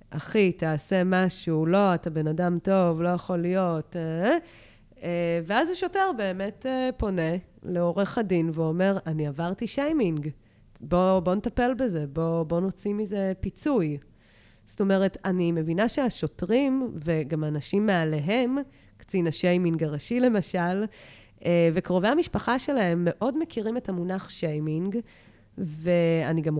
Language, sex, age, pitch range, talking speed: Hebrew, female, 20-39, 160-200 Hz, 115 wpm